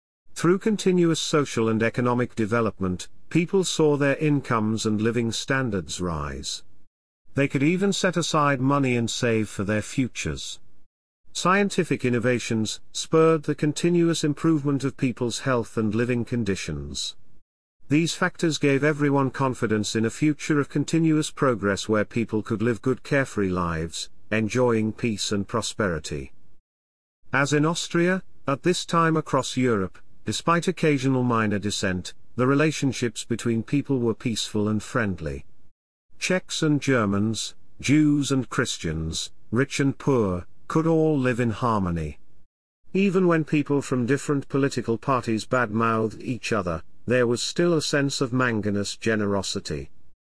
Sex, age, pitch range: male, 40-59, 105-145 Hz